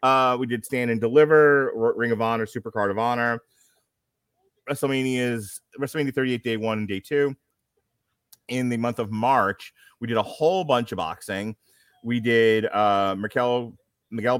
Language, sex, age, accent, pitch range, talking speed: English, male, 30-49, American, 105-125 Hz, 165 wpm